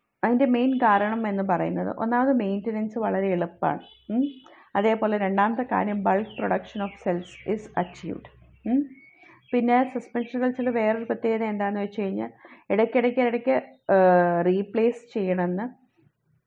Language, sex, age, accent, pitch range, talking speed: Malayalam, female, 30-49, native, 185-230 Hz, 110 wpm